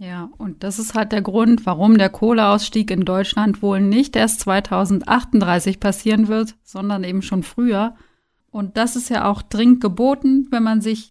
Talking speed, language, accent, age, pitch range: 175 wpm, German, German, 30-49, 190-220 Hz